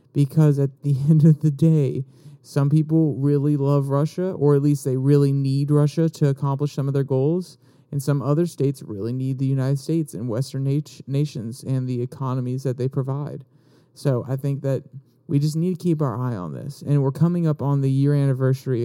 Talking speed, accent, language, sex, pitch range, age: 205 wpm, American, English, male, 135-150 Hz, 30-49